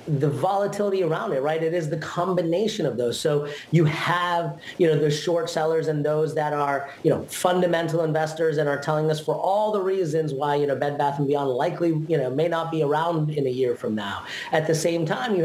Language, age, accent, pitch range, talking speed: English, 30-49, American, 140-170 Hz, 230 wpm